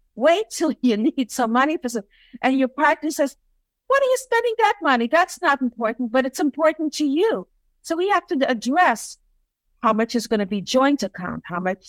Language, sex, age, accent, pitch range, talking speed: English, female, 50-69, American, 225-300 Hz, 205 wpm